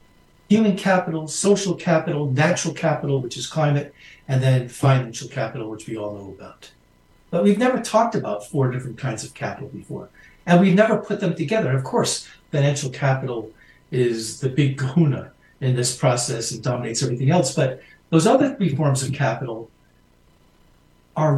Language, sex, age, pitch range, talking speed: English, male, 60-79, 130-170 Hz, 165 wpm